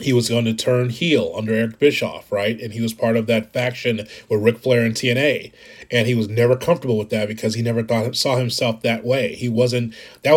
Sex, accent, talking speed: male, American, 230 wpm